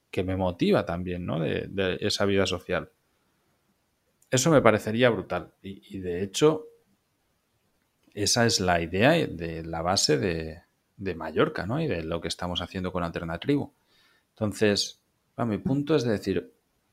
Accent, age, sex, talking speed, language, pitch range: Spanish, 30-49, male, 160 wpm, Spanish, 95-115 Hz